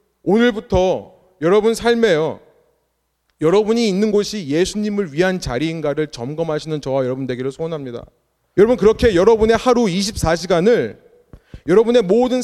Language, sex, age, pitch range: Korean, male, 30-49, 160-225 Hz